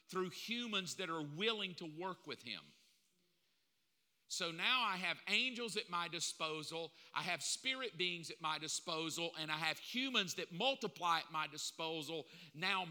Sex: male